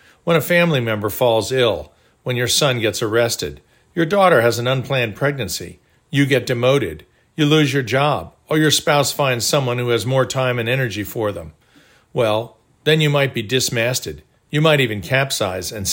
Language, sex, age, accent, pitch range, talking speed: English, male, 50-69, American, 120-155 Hz, 180 wpm